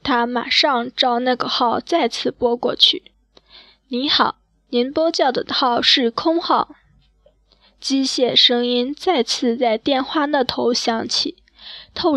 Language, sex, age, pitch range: Chinese, female, 20-39, 240-290 Hz